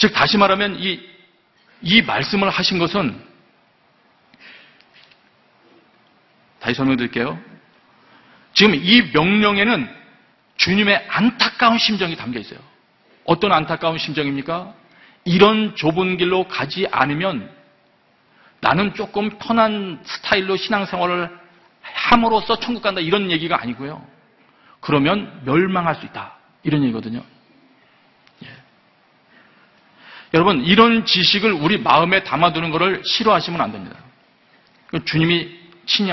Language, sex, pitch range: Korean, male, 135-205 Hz